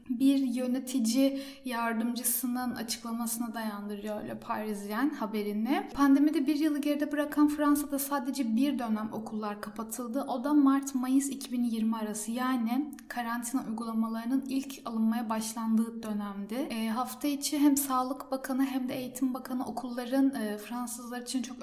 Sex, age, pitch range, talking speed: female, 10-29, 230-270 Hz, 130 wpm